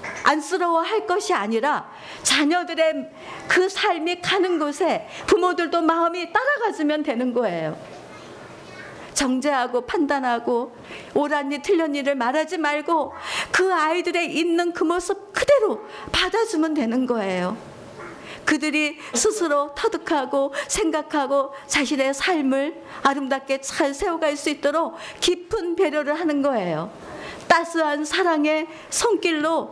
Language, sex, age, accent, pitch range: Korean, female, 50-69, native, 255-335 Hz